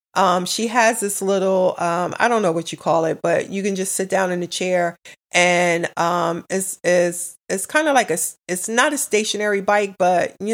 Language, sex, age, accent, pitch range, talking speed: English, female, 40-59, American, 180-225 Hz, 215 wpm